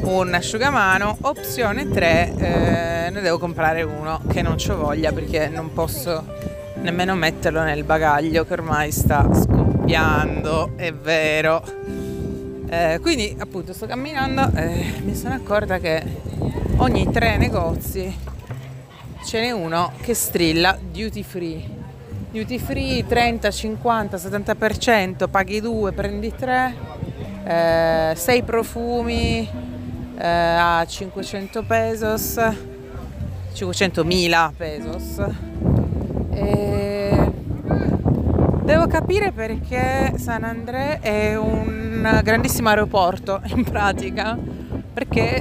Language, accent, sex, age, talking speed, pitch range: Italian, native, female, 30-49, 105 wpm, 150-200 Hz